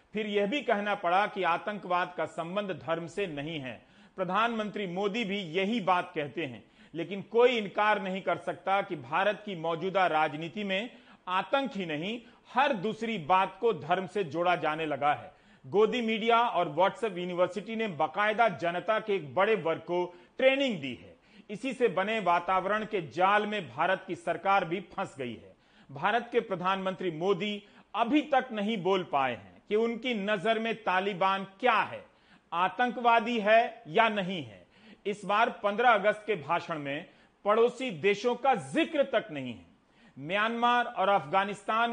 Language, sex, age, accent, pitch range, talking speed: Hindi, male, 40-59, native, 175-220 Hz, 160 wpm